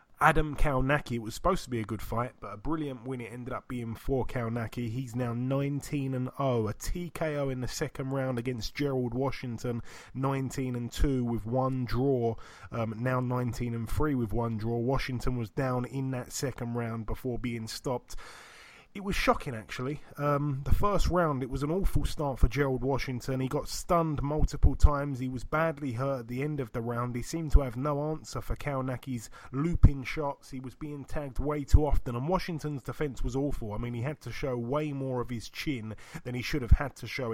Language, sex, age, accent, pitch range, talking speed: English, male, 20-39, British, 120-145 Hz, 200 wpm